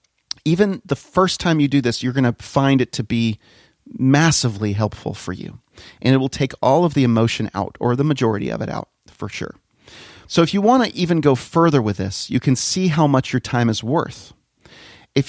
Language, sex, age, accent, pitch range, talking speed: English, male, 40-59, American, 120-150 Hz, 215 wpm